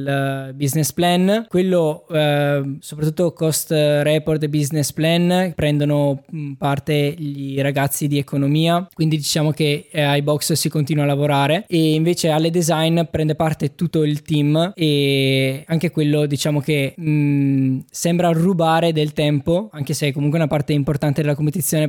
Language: Italian